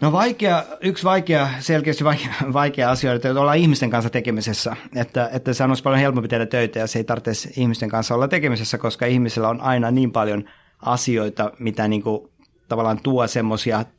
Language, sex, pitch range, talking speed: Finnish, male, 115-130 Hz, 185 wpm